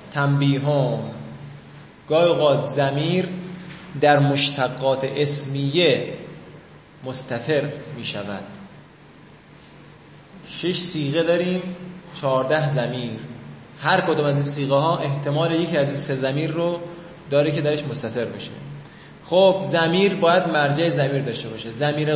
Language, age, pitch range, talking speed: Persian, 20-39, 140-165 Hz, 105 wpm